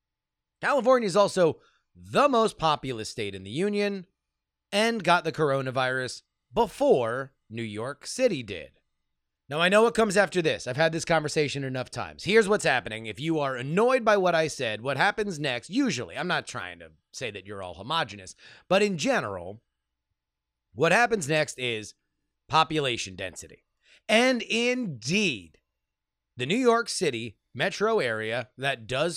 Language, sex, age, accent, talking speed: English, male, 30-49, American, 155 wpm